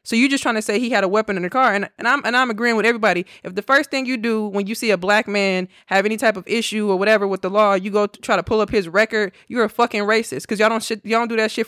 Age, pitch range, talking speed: 20-39, 185-220 Hz, 335 wpm